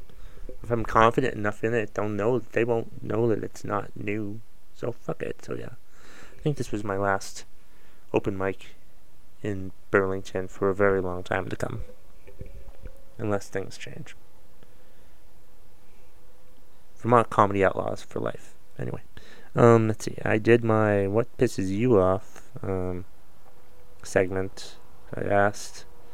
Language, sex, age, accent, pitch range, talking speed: English, male, 30-49, American, 95-115 Hz, 140 wpm